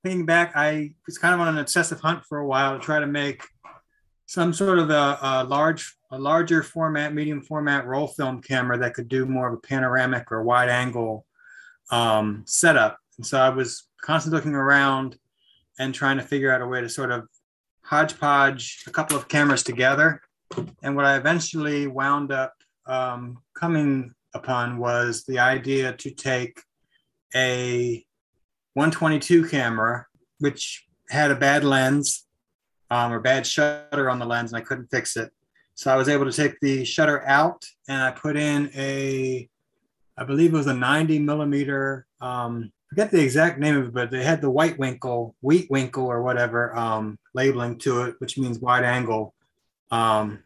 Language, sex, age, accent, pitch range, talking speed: English, male, 30-49, American, 125-150 Hz, 175 wpm